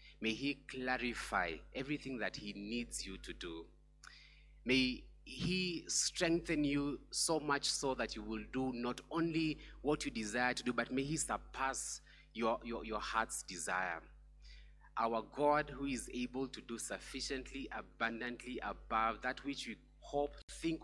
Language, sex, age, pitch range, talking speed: English, male, 30-49, 90-135 Hz, 150 wpm